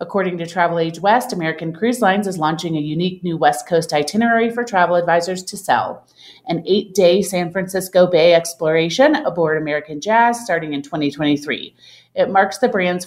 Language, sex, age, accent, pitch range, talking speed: English, female, 30-49, American, 155-205 Hz, 170 wpm